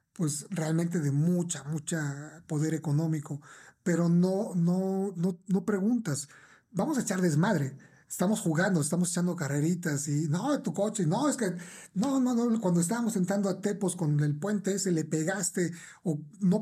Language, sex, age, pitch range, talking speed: Spanish, male, 40-59, 160-200 Hz, 165 wpm